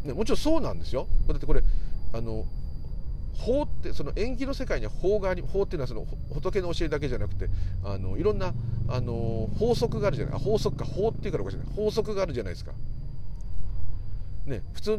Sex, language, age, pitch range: male, Japanese, 40-59, 85-135 Hz